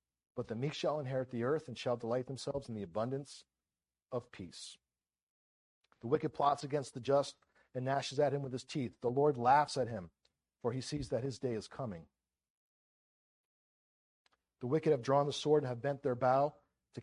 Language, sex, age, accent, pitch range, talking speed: English, male, 50-69, American, 110-145 Hz, 190 wpm